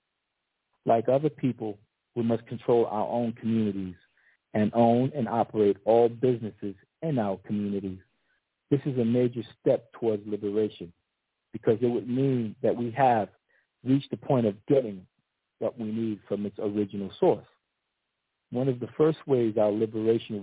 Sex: male